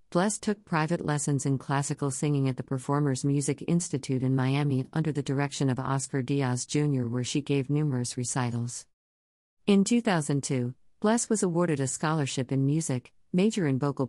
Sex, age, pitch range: female, 50-69, 130-160 Hz